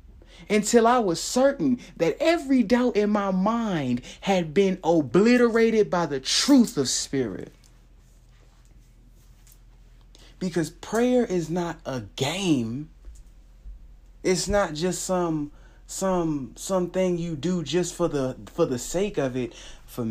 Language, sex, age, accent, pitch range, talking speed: English, male, 30-49, American, 120-185 Hz, 120 wpm